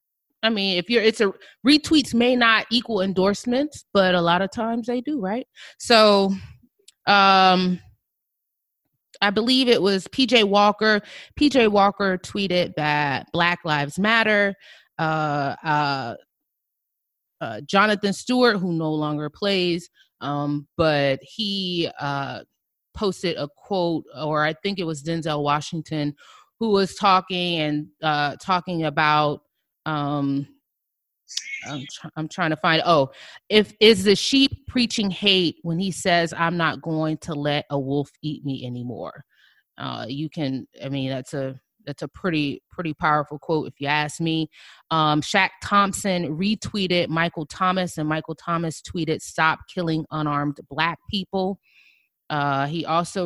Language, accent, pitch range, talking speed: English, American, 150-195 Hz, 140 wpm